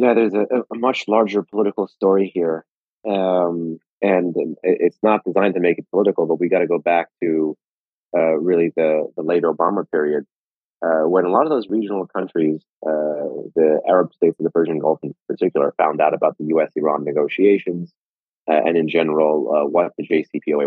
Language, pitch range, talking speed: English, 80-100 Hz, 190 wpm